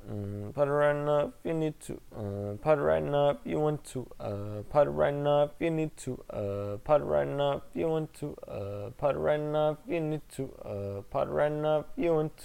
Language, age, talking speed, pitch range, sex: English, 20-39, 135 wpm, 100-160 Hz, male